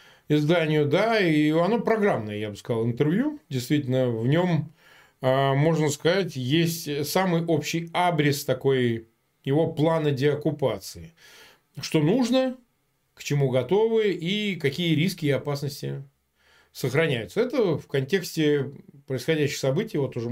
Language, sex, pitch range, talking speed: Russian, male, 130-170 Hz, 120 wpm